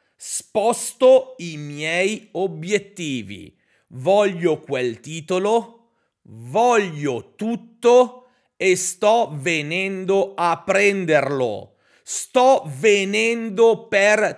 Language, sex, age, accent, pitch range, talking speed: Italian, male, 40-59, native, 155-225 Hz, 70 wpm